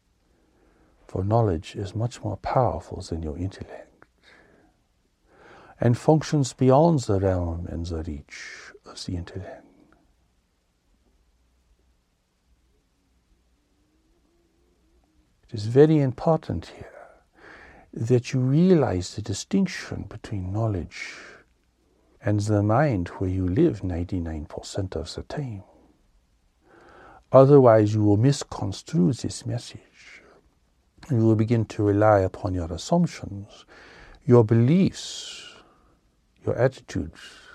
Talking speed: 95 wpm